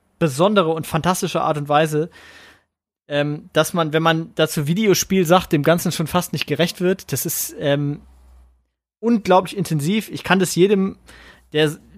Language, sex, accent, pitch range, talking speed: German, male, German, 145-180 Hz, 155 wpm